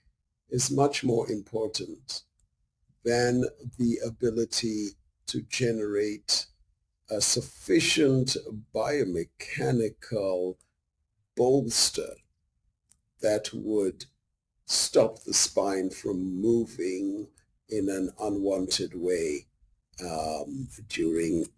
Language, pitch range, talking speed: English, 95-135 Hz, 70 wpm